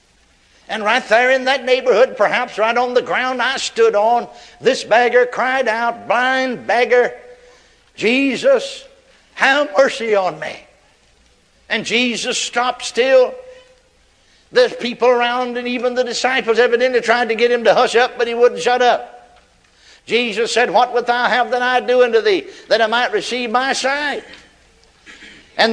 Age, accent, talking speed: 60-79, American, 155 wpm